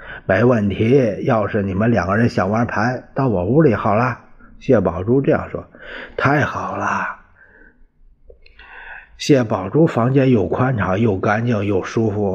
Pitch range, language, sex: 90-115 Hz, Chinese, male